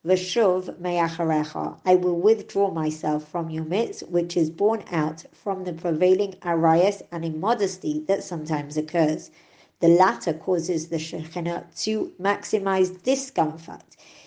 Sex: male